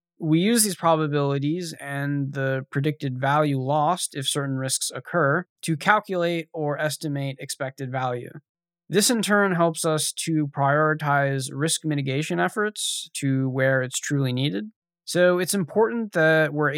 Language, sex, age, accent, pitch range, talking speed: English, male, 20-39, American, 135-170 Hz, 140 wpm